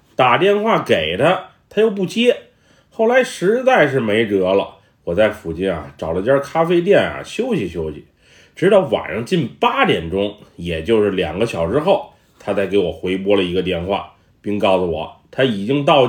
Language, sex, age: Chinese, male, 30-49